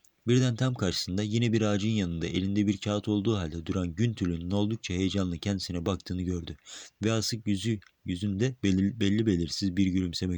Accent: native